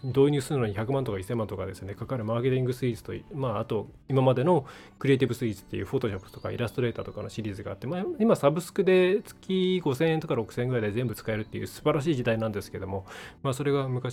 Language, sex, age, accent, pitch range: Japanese, male, 20-39, native, 110-150 Hz